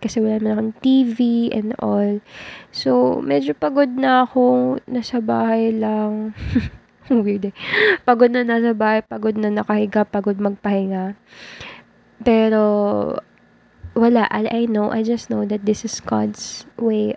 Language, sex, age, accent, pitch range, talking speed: Filipino, female, 20-39, native, 205-245 Hz, 135 wpm